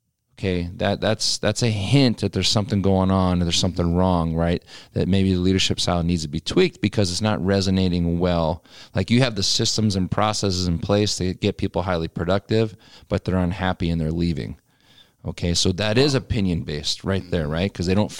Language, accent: English, American